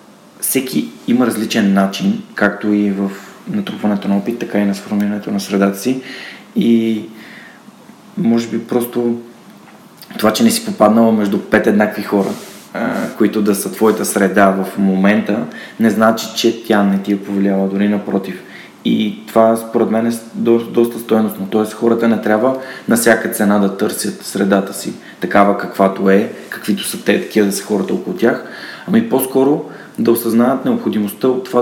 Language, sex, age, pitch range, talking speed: Bulgarian, male, 20-39, 100-115 Hz, 160 wpm